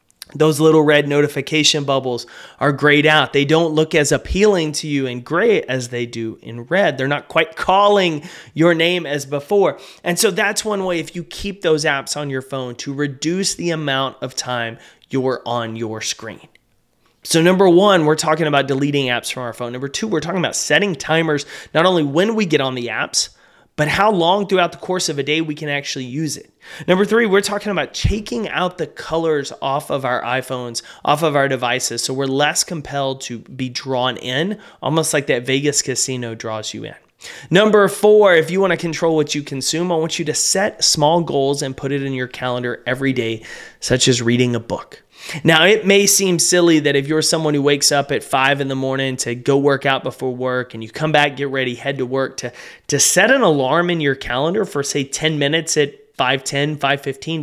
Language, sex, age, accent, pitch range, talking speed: English, male, 30-49, American, 130-170 Hz, 210 wpm